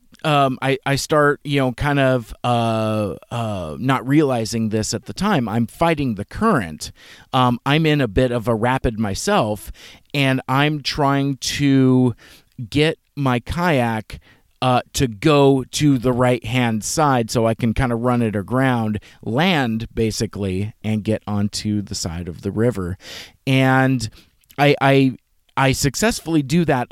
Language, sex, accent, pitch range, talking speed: English, male, American, 110-135 Hz, 155 wpm